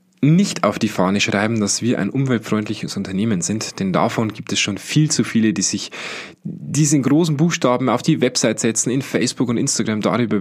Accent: German